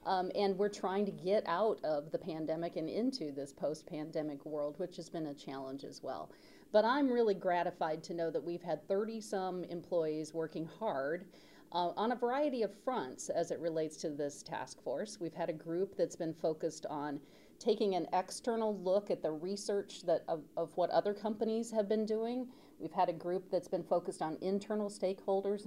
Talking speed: 195 wpm